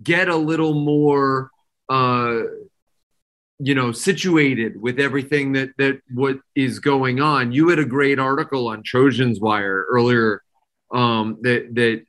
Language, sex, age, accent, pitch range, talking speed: English, male, 30-49, American, 120-155 Hz, 140 wpm